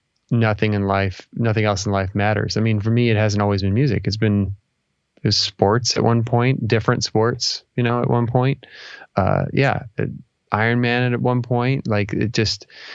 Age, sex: 20-39, male